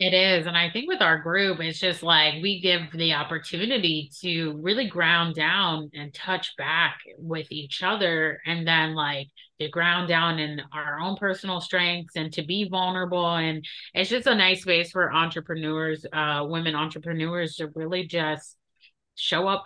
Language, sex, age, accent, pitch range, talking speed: English, female, 30-49, American, 160-190 Hz, 170 wpm